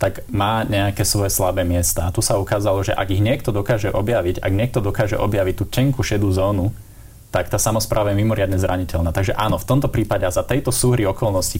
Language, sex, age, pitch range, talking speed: Slovak, male, 20-39, 95-110 Hz, 205 wpm